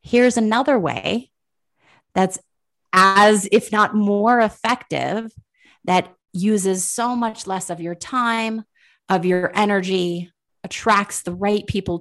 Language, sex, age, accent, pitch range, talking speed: English, female, 30-49, American, 175-225 Hz, 120 wpm